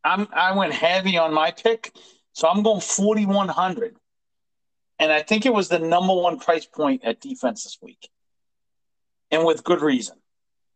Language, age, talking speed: English, 40-59, 155 wpm